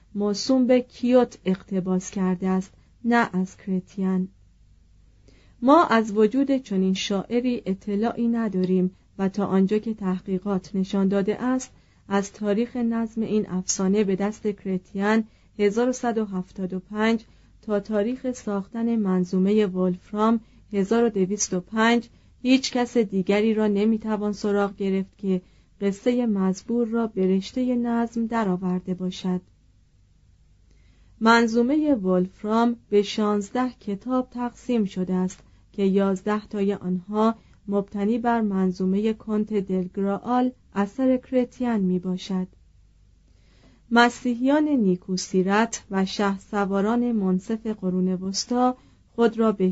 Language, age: Persian, 40-59